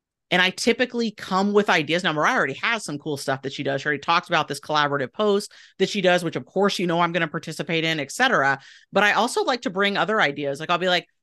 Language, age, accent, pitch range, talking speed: English, 30-49, American, 155-195 Hz, 265 wpm